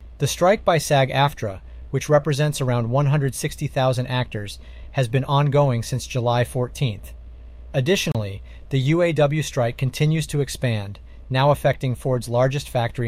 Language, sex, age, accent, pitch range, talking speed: English, male, 40-59, American, 105-145 Hz, 125 wpm